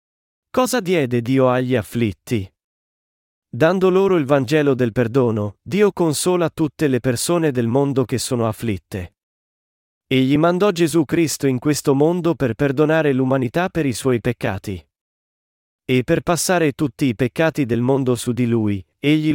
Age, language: 40-59, Italian